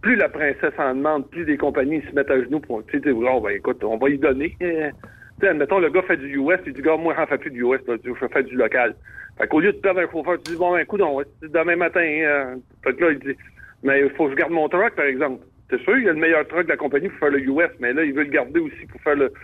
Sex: male